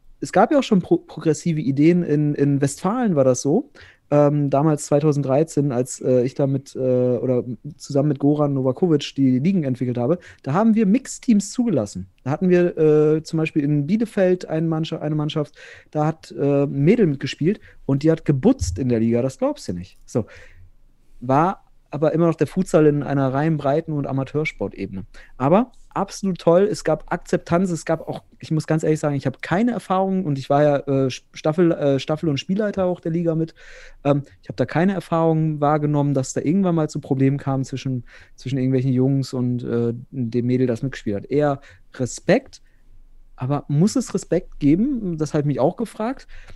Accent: German